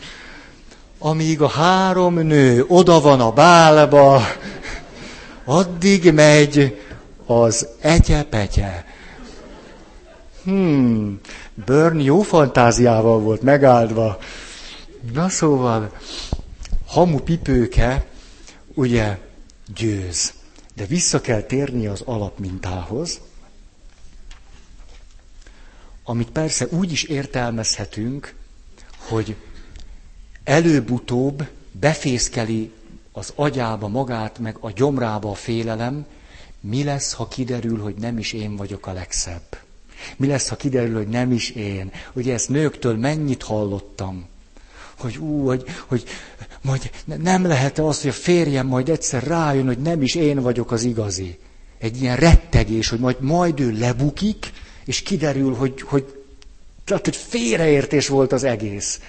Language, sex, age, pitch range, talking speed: Hungarian, male, 60-79, 110-145 Hz, 110 wpm